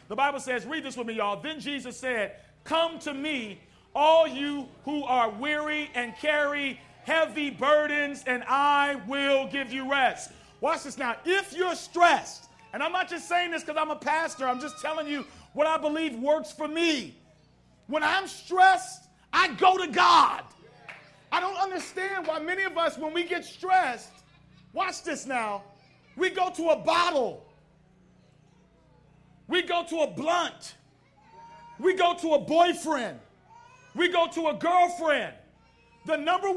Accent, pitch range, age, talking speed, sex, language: American, 285-350 Hz, 40-59, 160 wpm, male, English